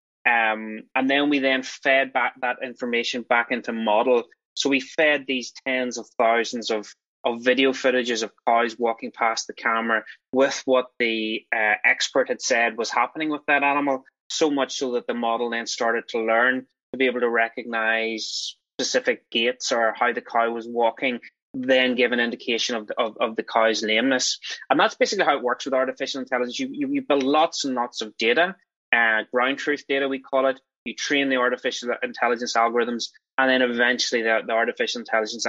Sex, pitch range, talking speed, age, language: male, 115-135 Hz, 190 wpm, 20-39, English